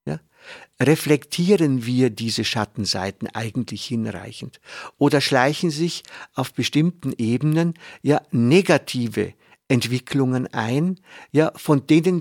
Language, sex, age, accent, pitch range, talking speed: German, male, 50-69, German, 120-155 Hz, 95 wpm